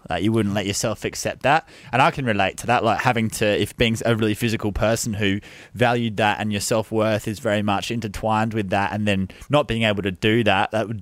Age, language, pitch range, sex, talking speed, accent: 20-39, English, 95-110 Hz, male, 235 wpm, Australian